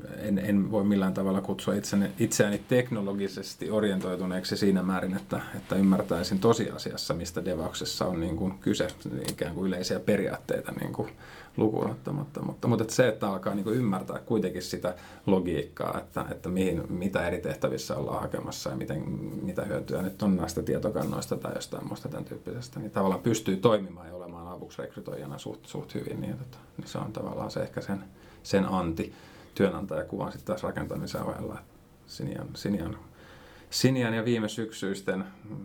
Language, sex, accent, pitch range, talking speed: Finnish, male, native, 90-105 Hz, 160 wpm